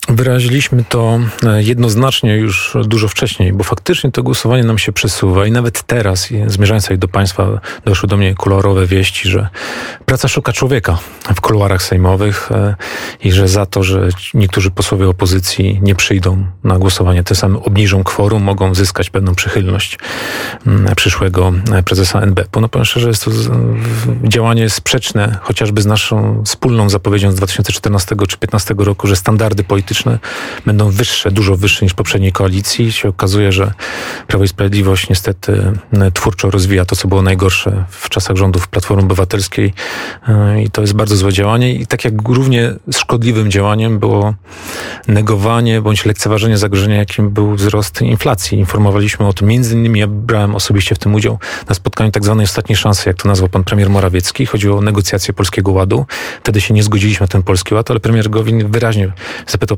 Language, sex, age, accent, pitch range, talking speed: Polish, male, 40-59, native, 95-110 Hz, 160 wpm